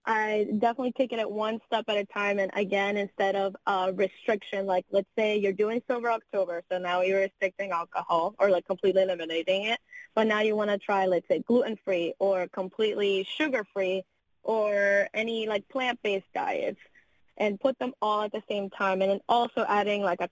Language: English